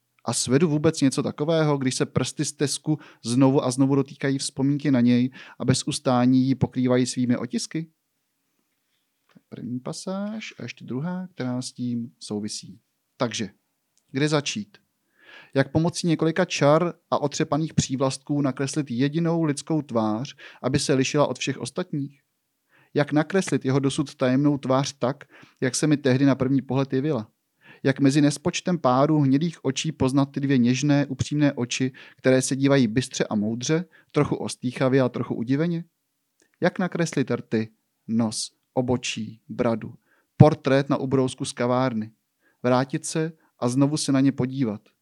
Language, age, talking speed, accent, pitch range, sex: Czech, 30-49, 145 wpm, native, 125-150 Hz, male